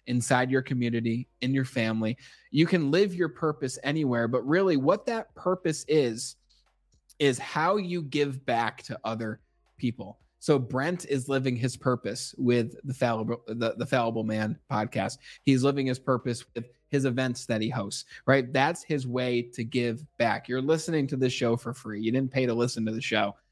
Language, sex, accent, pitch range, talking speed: English, male, American, 120-155 Hz, 180 wpm